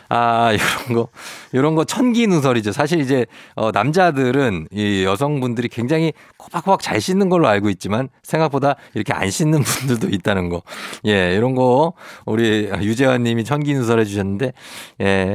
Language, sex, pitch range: Korean, male, 105-150 Hz